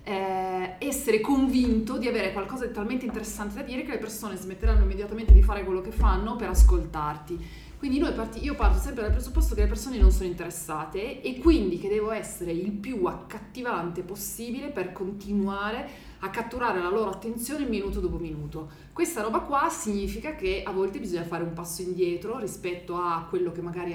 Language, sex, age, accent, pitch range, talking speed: Italian, female, 30-49, native, 175-225 Hz, 180 wpm